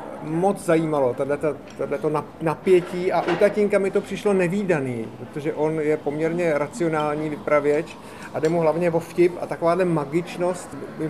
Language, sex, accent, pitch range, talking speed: Czech, male, native, 155-195 Hz, 145 wpm